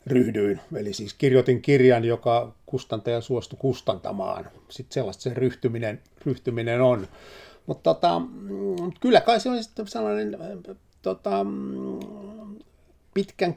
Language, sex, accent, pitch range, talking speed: Finnish, male, native, 125-160 Hz, 110 wpm